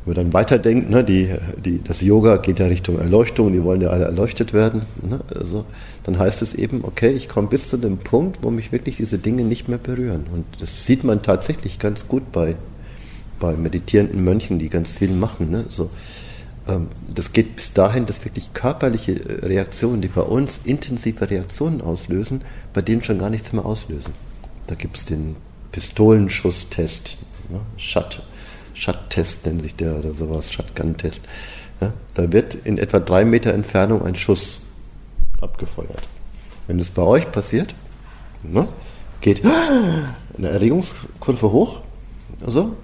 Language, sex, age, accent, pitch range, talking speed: German, male, 50-69, German, 90-110 Hz, 160 wpm